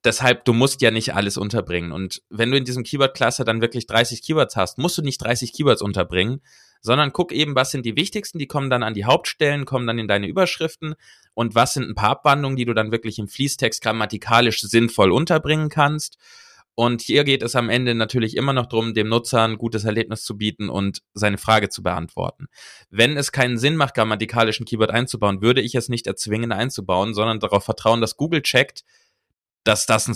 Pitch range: 110-140 Hz